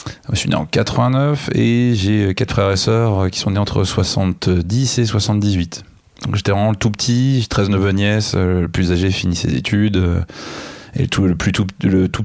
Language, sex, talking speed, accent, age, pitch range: French, male, 200 wpm, French, 20-39, 90-110 Hz